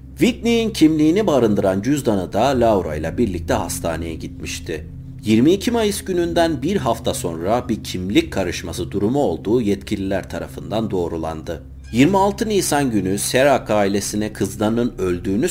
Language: Turkish